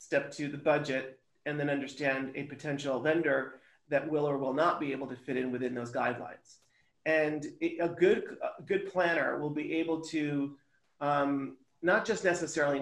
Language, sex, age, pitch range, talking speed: English, male, 40-59, 140-175 Hz, 175 wpm